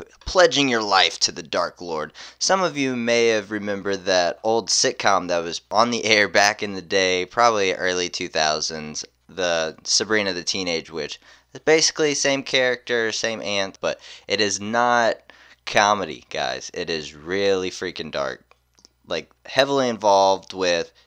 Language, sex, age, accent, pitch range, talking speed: English, male, 20-39, American, 85-115 Hz, 155 wpm